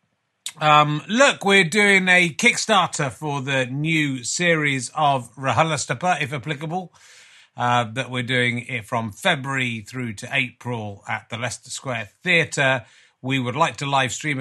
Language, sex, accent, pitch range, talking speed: English, male, British, 115-160 Hz, 145 wpm